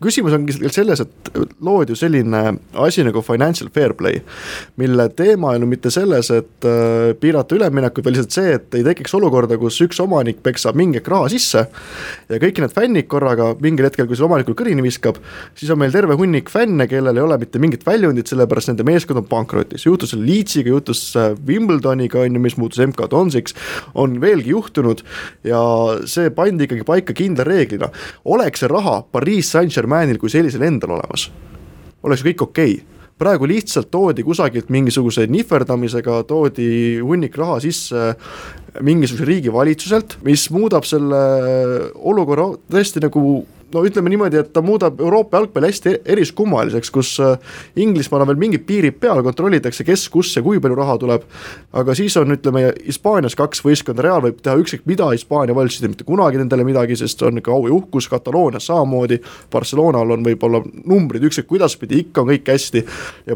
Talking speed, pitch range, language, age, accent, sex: 165 wpm, 125-165 Hz, English, 20-39, Finnish, male